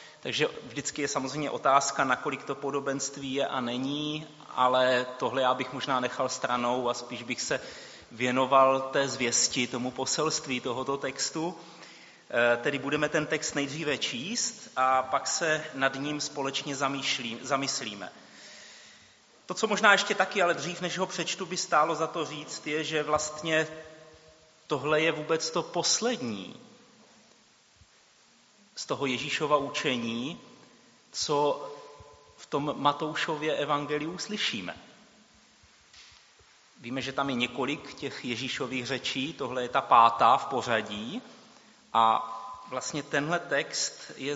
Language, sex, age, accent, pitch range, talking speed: Czech, male, 30-49, native, 130-160 Hz, 130 wpm